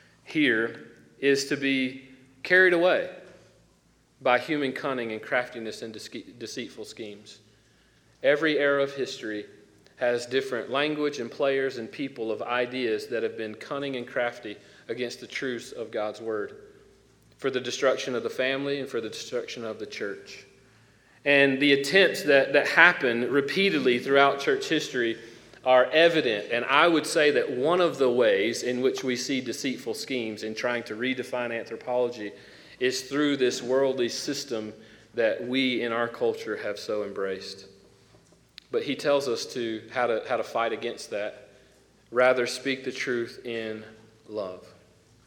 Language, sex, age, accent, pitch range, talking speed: English, male, 40-59, American, 115-140 Hz, 150 wpm